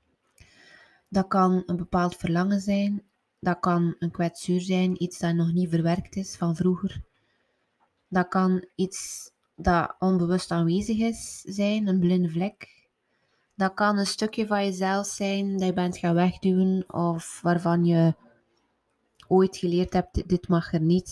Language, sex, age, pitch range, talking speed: Dutch, female, 20-39, 175-200 Hz, 150 wpm